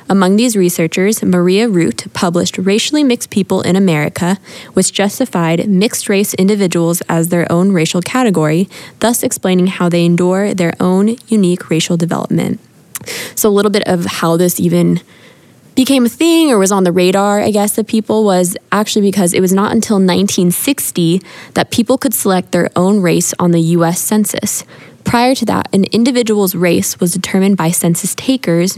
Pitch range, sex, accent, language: 175-210 Hz, female, American, English